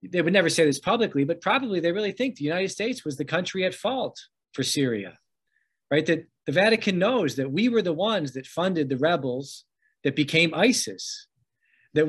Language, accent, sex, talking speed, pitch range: English, American, male, 195 wpm, 140-185 Hz